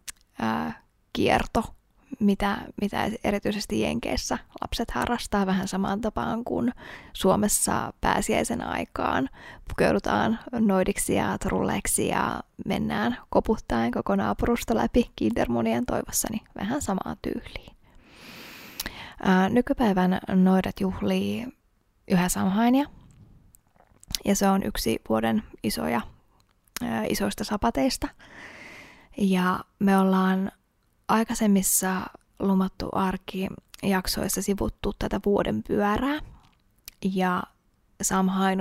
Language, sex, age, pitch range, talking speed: Finnish, female, 20-39, 180-210 Hz, 85 wpm